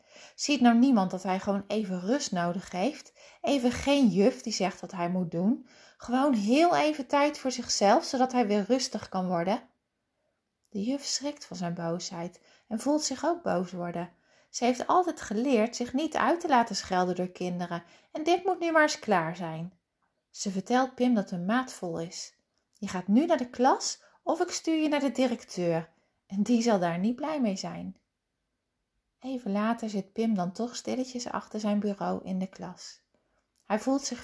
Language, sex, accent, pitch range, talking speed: Dutch, female, Dutch, 185-275 Hz, 190 wpm